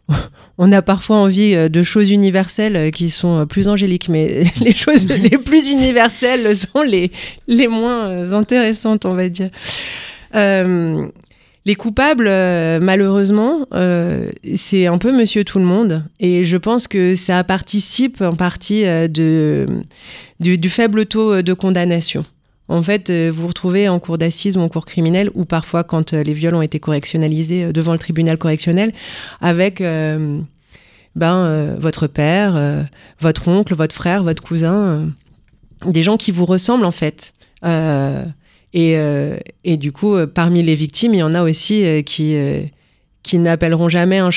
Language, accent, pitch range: French, French, 160-200 Hz